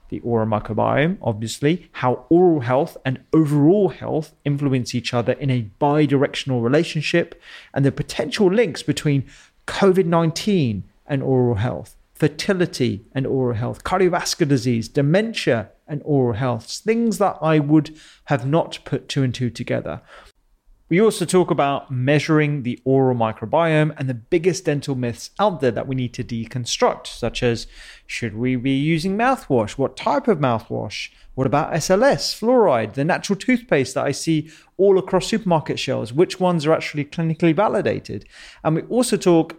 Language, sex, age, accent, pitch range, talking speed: English, male, 30-49, British, 125-160 Hz, 155 wpm